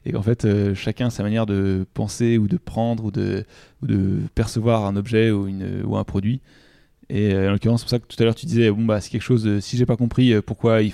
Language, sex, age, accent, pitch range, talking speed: French, male, 20-39, French, 105-120 Hz, 265 wpm